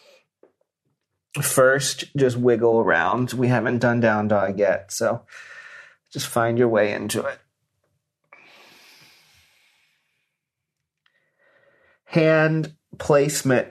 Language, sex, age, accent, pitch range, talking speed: English, male, 40-59, American, 105-140 Hz, 85 wpm